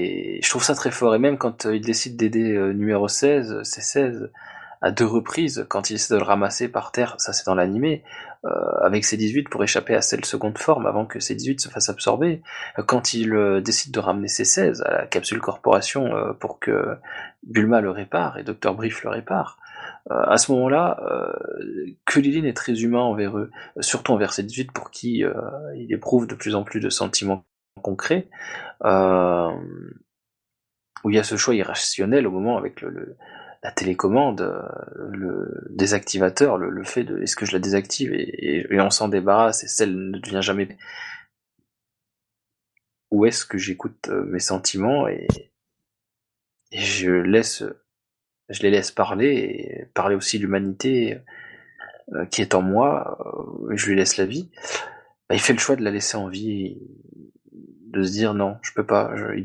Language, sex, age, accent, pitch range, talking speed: French, male, 20-39, French, 100-120 Hz, 175 wpm